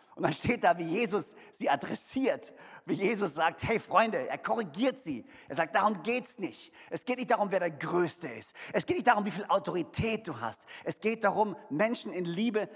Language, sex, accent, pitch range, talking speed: German, male, German, 175-250 Hz, 205 wpm